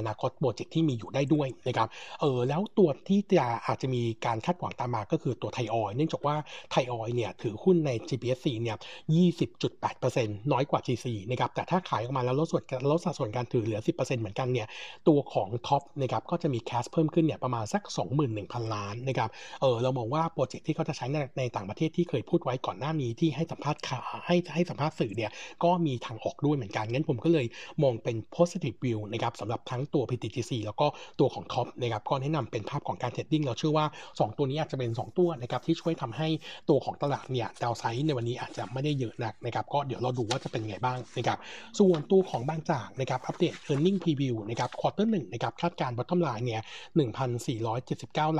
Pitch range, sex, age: 120-160 Hz, male, 60-79